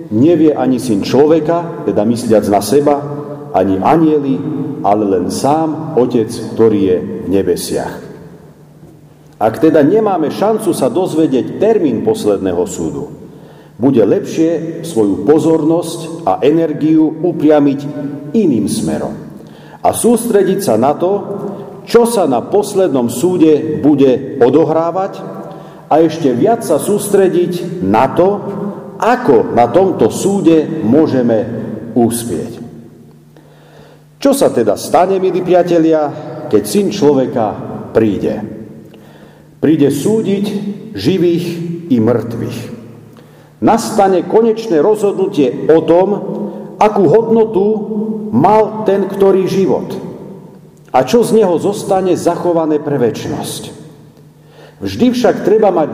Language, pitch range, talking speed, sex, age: Slovak, 145-195 Hz, 105 wpm, male, 50-69